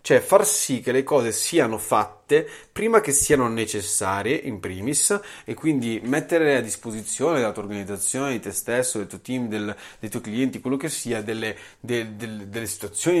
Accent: native